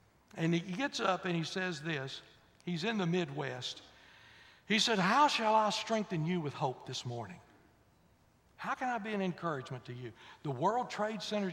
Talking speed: 180 wpm